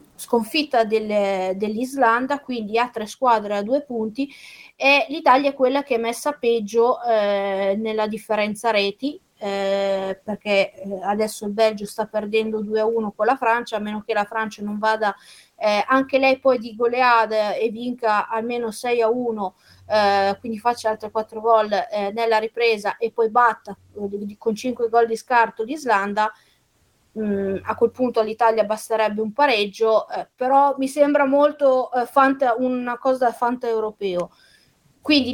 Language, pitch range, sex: Italian, 210-265 Hz, female